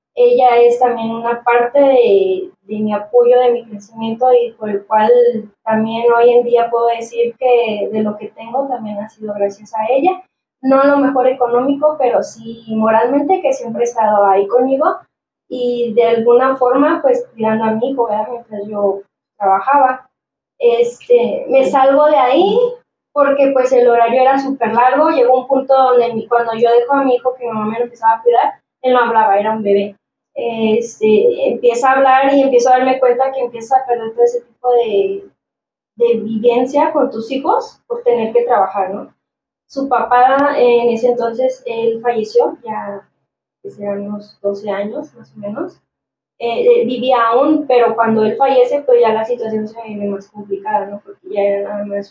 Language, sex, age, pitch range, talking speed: Spanish, female, 20-39, 220-265 Hz, 185 wpm